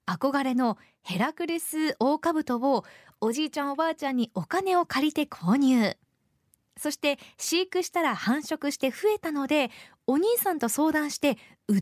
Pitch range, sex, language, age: 235-345 Hz, female, Japanese, 20-39